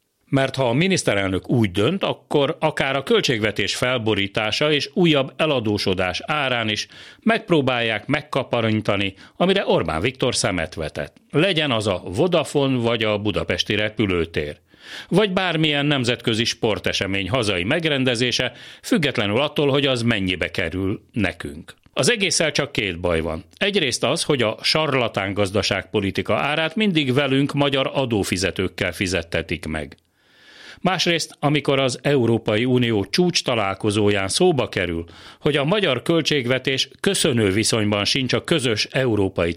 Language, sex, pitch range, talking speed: Hungarian, male, 100-145 Hz, 125 wpm